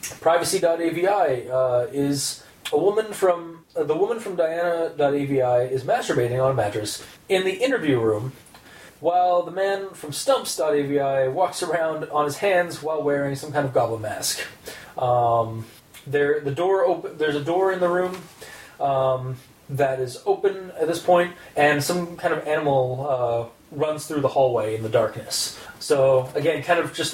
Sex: male